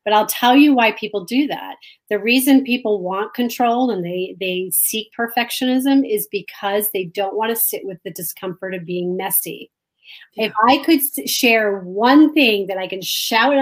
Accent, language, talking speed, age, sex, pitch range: American, English, 180 wpm, 30-49, female, 200-250 Hz